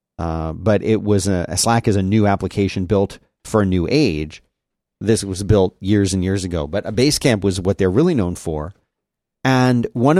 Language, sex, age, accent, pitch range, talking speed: English, male, 40-59, American, 95-120 Hz, 205 wpm